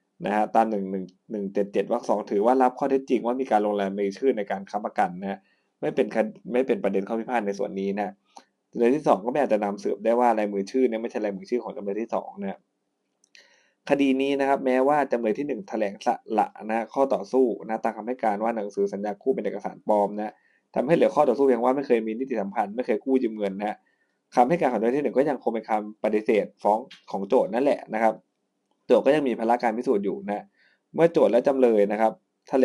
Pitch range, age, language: 100-125 Hz, 20-39, Thai